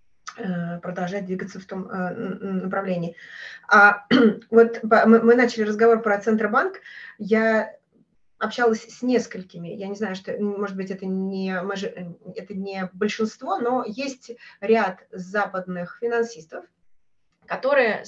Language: Russian